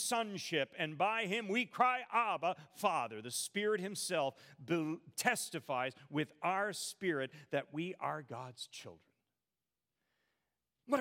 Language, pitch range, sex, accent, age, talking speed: English, 125-175 Hz, male, American, 40-59, 115 wpm